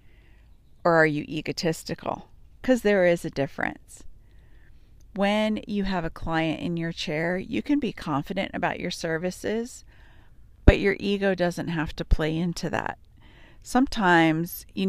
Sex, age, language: female, 40-59, English